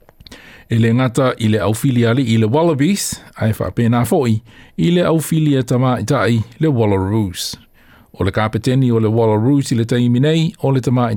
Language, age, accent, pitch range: French, 20-39, Australian, 110-145 Hz